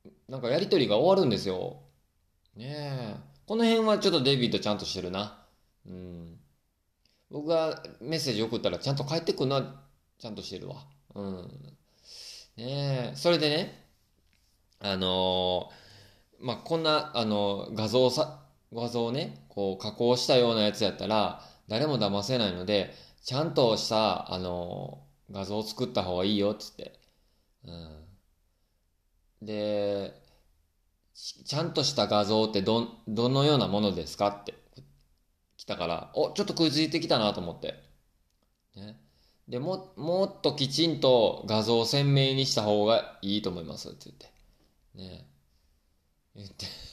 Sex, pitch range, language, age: male, 85-135 Hz, Japanese, 20-39